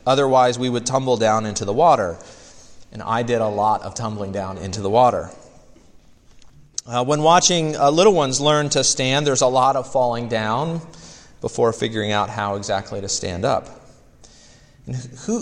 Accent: American